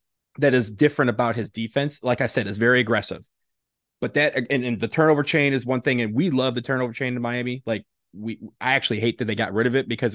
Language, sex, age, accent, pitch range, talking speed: English, male, 20-39, American, 110-135 Hz, 250 wpm